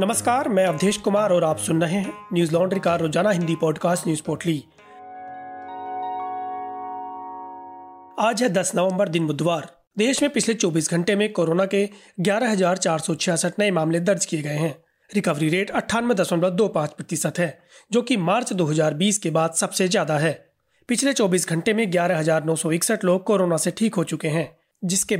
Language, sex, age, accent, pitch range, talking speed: Hindi, male, 30-49, native, 170-215 Hz, 150 wpm